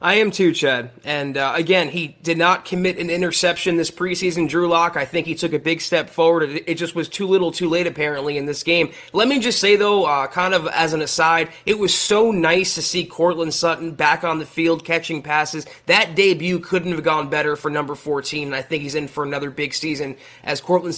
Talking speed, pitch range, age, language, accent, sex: 230 wpm, 160-200 Hz, 20-39, English, American, male